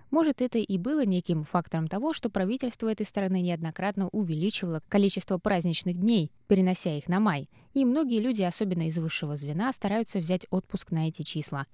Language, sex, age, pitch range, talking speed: Russian, female, 20-39, 165-220 Hz, 170 wpm